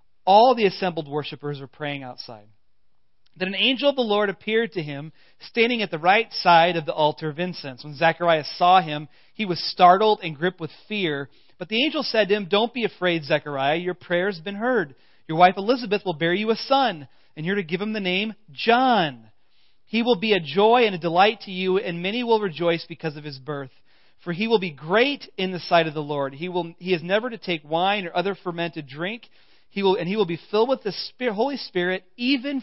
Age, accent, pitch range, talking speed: 40-59, American, 155-205 Hz, 220 wpm